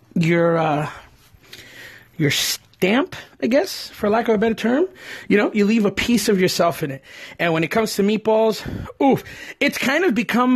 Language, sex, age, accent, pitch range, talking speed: English, male, 30-49, American, 195-285 Hz, 190 wpm